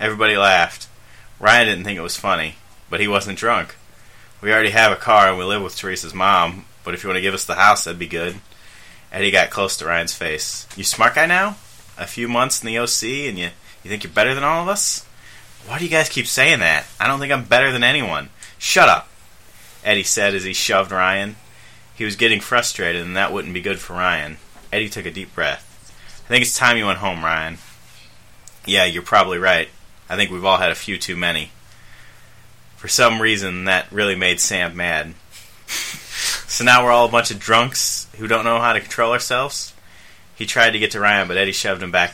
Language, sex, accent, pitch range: English, male, American, 90-115 Hz